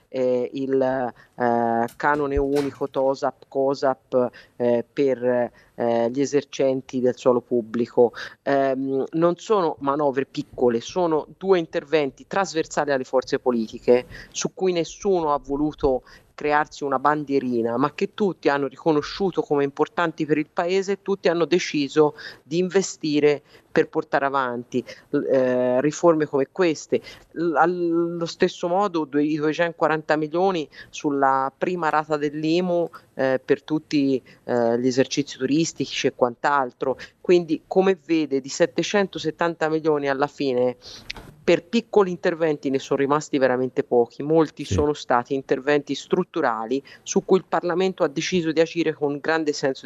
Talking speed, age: 135 wpm, 40-59